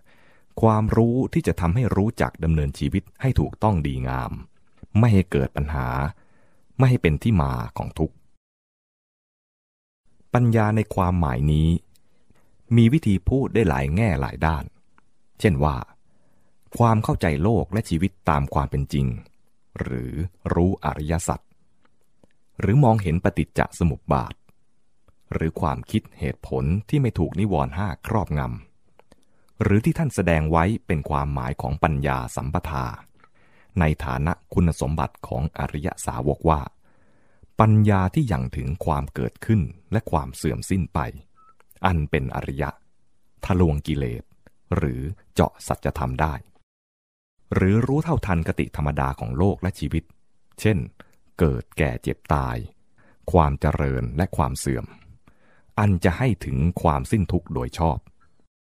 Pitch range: 70-105 Hz